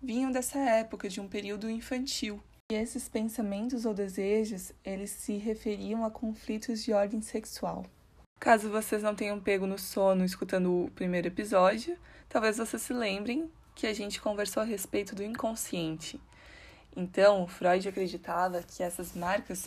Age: 20-39